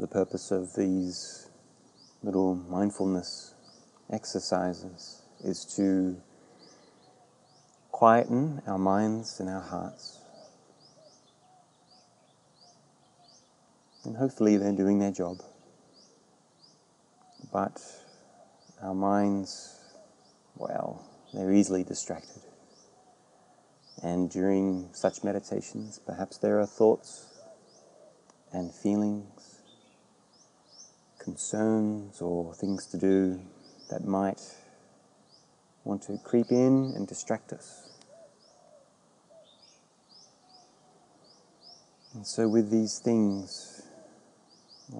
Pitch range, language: 95-110 Hz, English